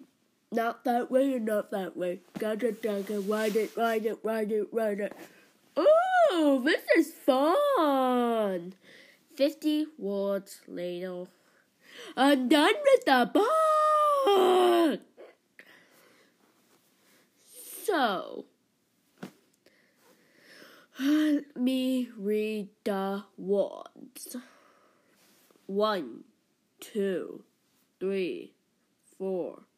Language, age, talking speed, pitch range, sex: English, 20-39, 75 wpm, 205-320 Hz, female